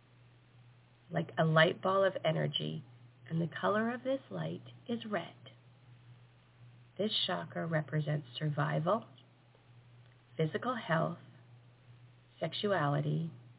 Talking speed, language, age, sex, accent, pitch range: 95 wpm, English, 30-49, female, American, 120-165 Hz